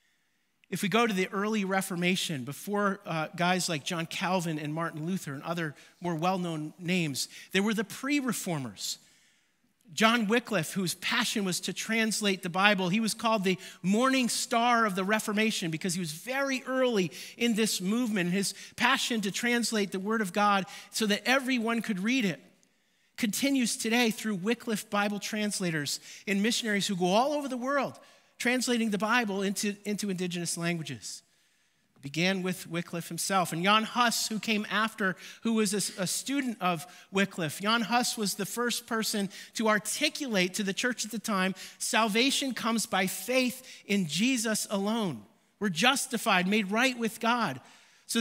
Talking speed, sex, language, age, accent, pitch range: 165 wpm, male, English, 40-59, American, 185-230 Hz